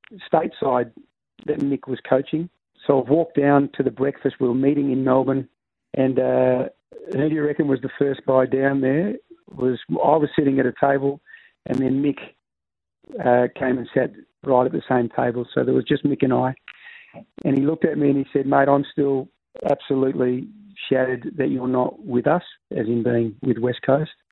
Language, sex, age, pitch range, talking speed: English, male, 40-59, 125-140 Hz, 195 wpm